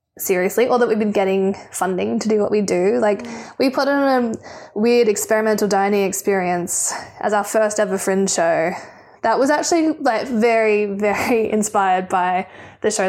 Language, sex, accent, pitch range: English, female, Australian, 190-235 Hz